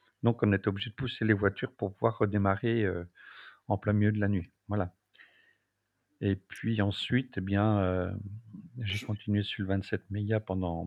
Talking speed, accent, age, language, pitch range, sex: 175 wpm, French, 50-69, French, 100-120 Hz, male